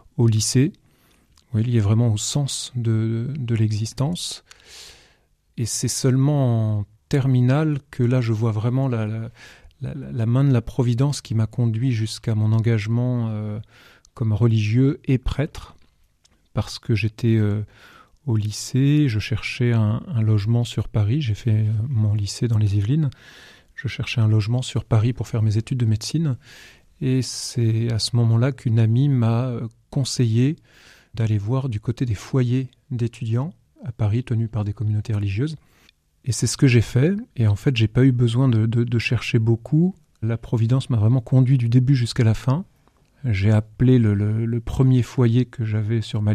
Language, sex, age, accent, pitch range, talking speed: French, male, 30-49, French, 110-130 Hz, 175 wpm